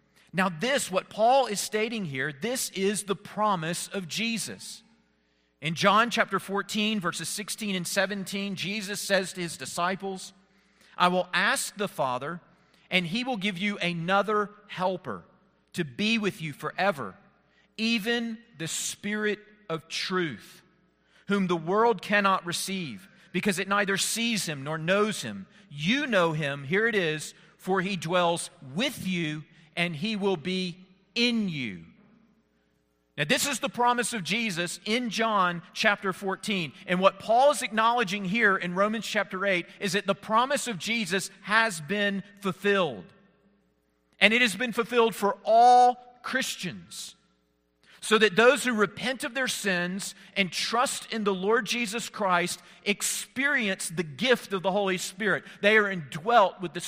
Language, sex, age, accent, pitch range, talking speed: English, male, 40-59, American, 180-215 Hz, 150 wpm